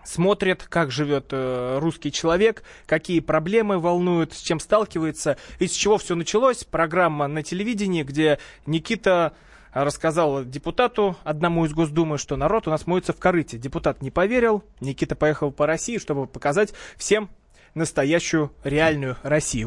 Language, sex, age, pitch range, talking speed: Russian, male, 20-39, 145-185 Hz, 145 wpm